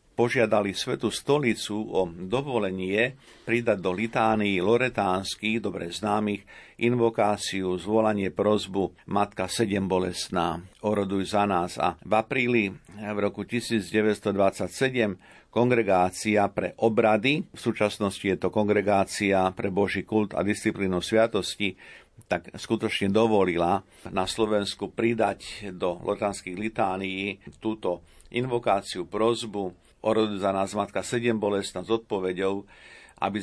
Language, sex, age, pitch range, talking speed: Slovak, male, 50-69, 95-110 Hz, 110 wpm